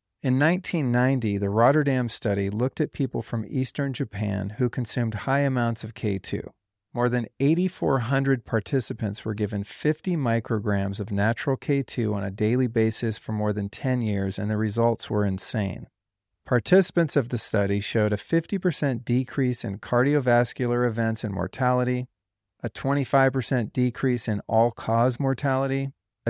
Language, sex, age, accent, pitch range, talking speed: English, male, 40-59, American, 105-130 Hz, 140 wpm